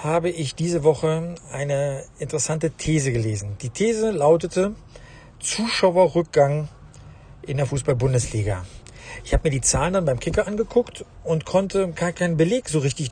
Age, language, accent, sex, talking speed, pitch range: 50-69, German, German, male, 140 wpm, 140-180 Hz